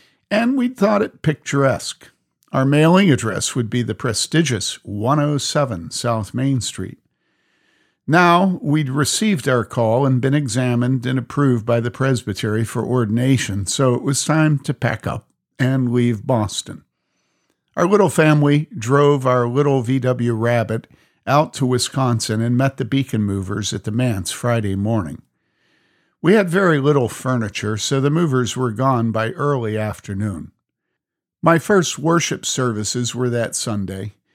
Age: 50-69